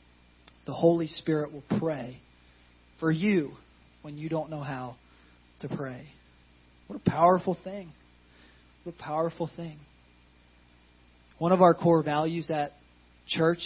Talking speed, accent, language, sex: 125 wpm, American, English, male